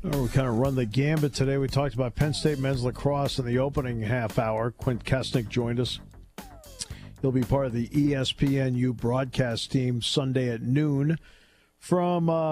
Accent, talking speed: American, 175 wpm